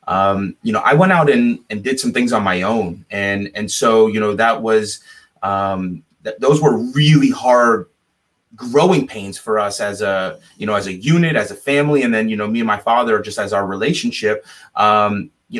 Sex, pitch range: male, 105-145 Hz